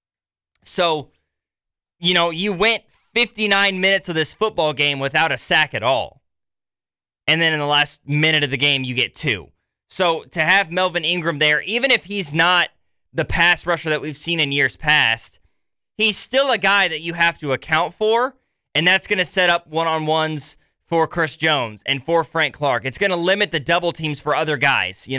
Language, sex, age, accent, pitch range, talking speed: English, male, 20-39, American, 135-175 Hz, 195 wpm